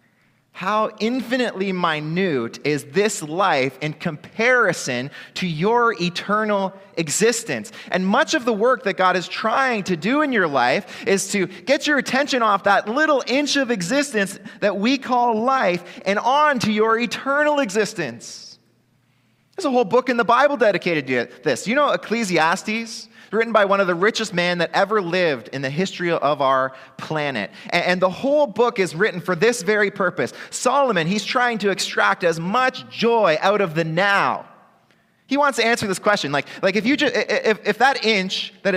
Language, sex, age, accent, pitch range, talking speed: English, male, 30-49, American, 150-230 Hz, 180 wpm